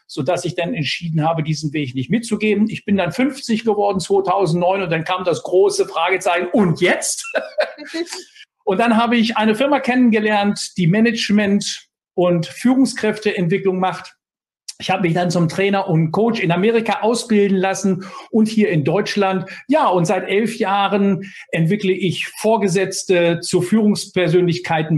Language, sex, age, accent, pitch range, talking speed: German, male, 50-69, German, 185-230 Hz, 150 wpm